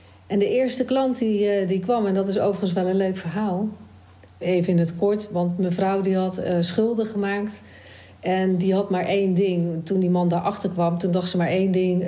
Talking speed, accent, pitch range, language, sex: 210 wpm, Dutch, 175-205 Hz, Dutch, female